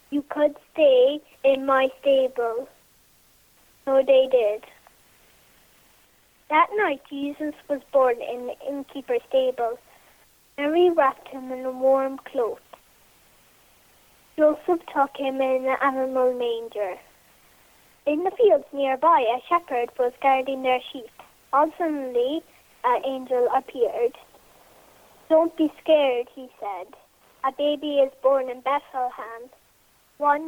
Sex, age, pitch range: female, 30-49, 255-295 Hz